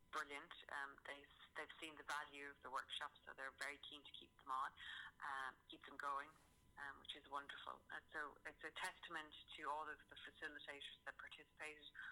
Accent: Irish